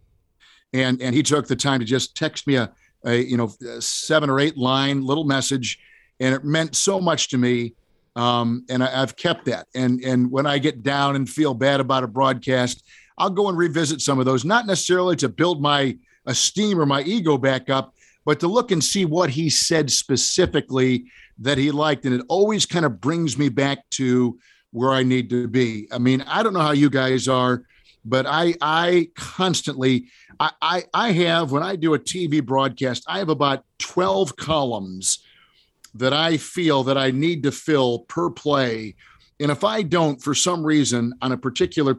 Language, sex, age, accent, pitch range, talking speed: English, male, 50-69, American, 130-160 Hz, 195 wpm